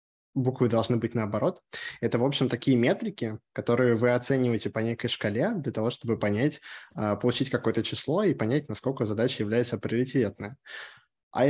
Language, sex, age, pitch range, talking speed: Russian, male, 20-39, 110-125 Hz, 150 wpm